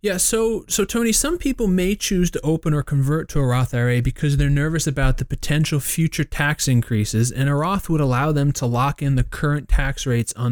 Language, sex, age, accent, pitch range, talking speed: English, male, 20-39, American, 120-140 Hz, 220 wpm